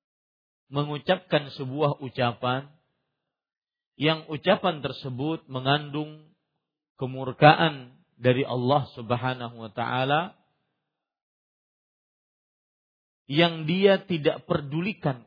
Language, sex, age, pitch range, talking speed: Malay, male, 40-59, 125-155 Hz, 65 wpm